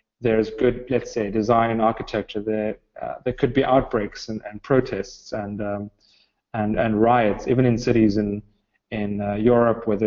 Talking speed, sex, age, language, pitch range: 175 wpm, male, 30-49, English, 110-125 Hz